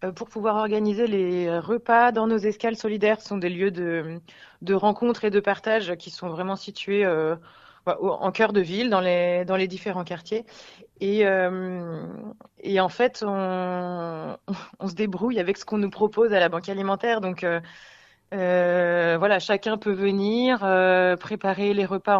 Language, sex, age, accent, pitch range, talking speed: French, female, 20-39, French, 175-210 Hz, 170 wpm